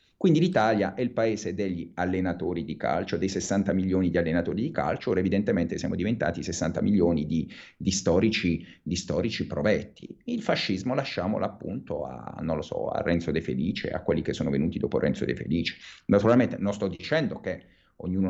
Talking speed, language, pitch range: 180 wpm, Italian, 90-110 Hz